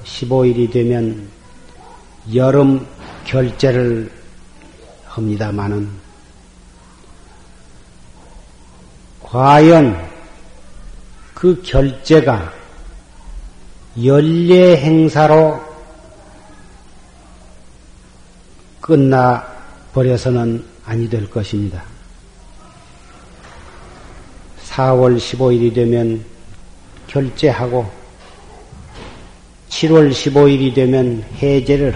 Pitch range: 90-140 Hz